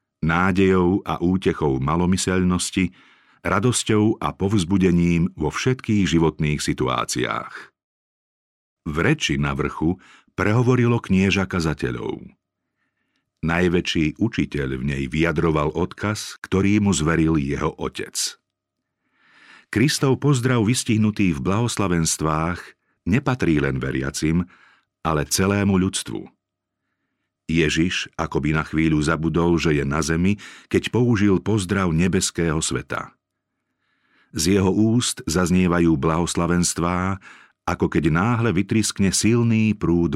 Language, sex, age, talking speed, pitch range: Slovak, male, 50-69, 95 wpm, 80-105 Hz